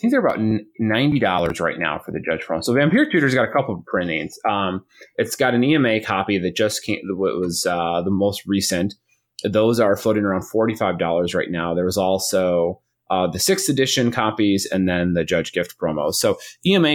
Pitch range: 85-110 Hz